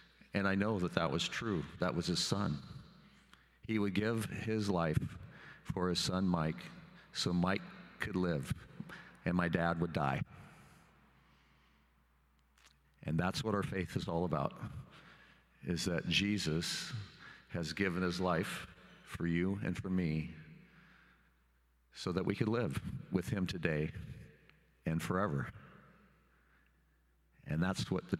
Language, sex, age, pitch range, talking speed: English, male, 50-69, 80-95 Hz, 135 wpm